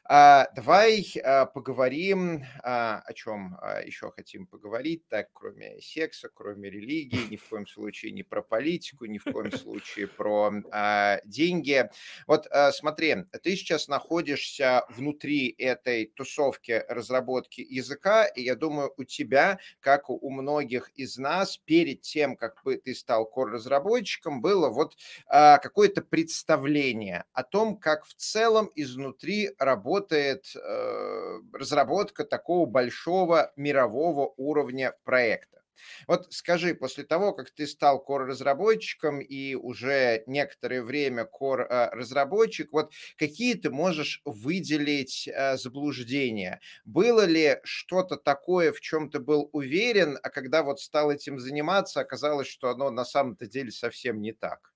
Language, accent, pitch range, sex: Russian, native, 130-170 Hz, male